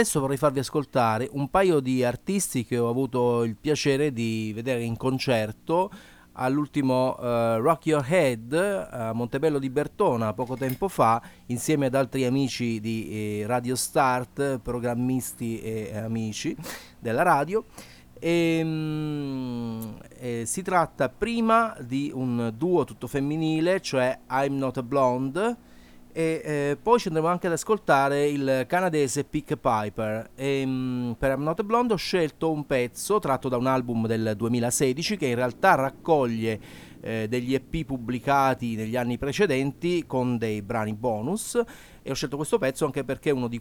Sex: male